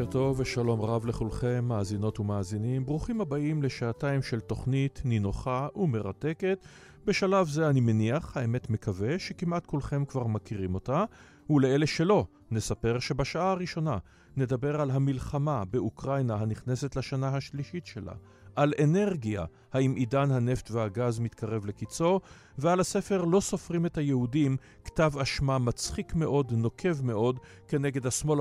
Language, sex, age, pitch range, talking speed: Hebrew, male, 40-59, 110-155 Hz, 125 wpm